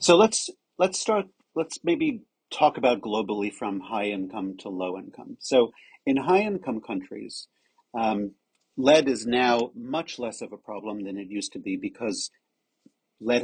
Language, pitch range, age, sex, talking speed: English, 105-140 Hz, 50-69, male, 160 wpm